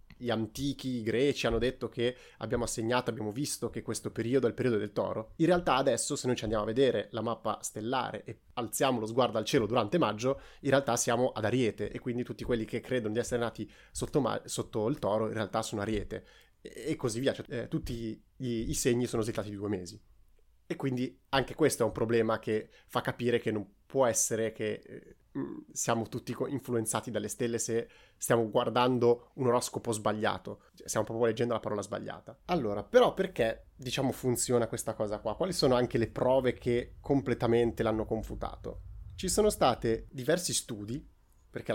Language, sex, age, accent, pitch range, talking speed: Italian, male, 30-49, native, 110-125 Hz, 195 wpm